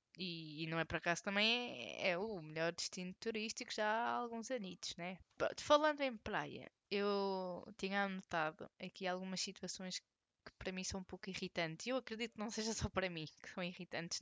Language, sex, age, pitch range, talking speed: Portuguese, female, 20-39, 170-225 Hz, 195 wpm